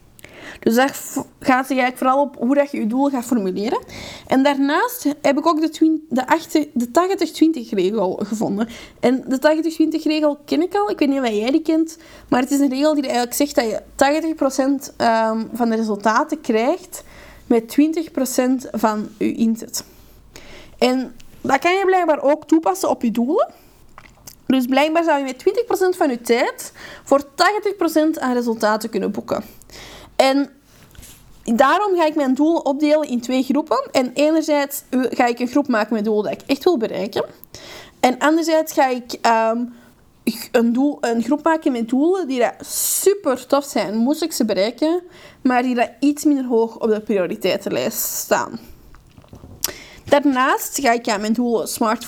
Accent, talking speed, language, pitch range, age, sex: Dutch, 165 wpm, Dutch, 240-310 Hz, 20-39, female